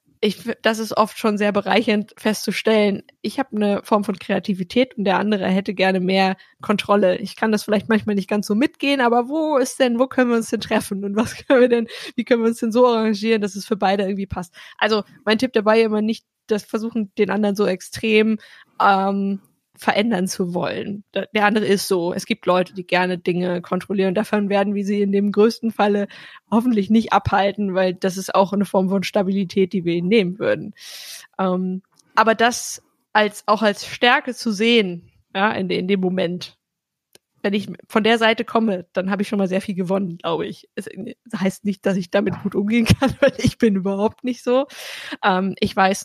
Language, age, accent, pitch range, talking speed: German, 20-39, German, 190-225 Hz, 205 wpm